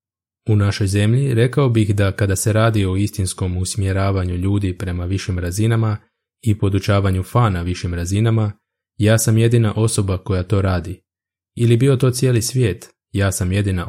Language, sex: Croatian, male